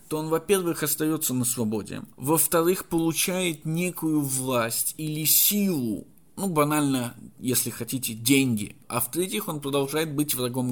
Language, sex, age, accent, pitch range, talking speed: Russian, male, 20-39, native, 130-165 Hz, 130 wpm